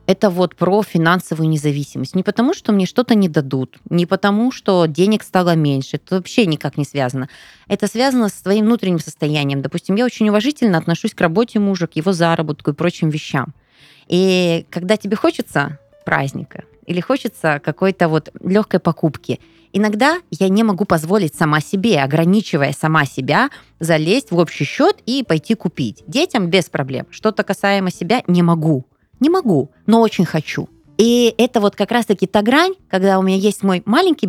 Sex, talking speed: female, 170 wpm